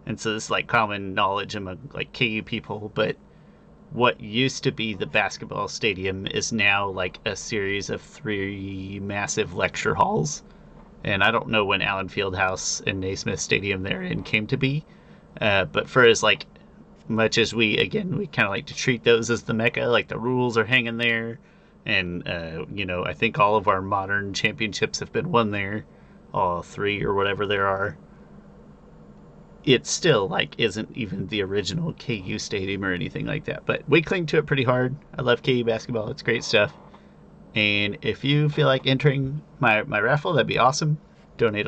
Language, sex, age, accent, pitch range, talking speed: English, male, 30-49, American, 100-135 Hz, 190 wpm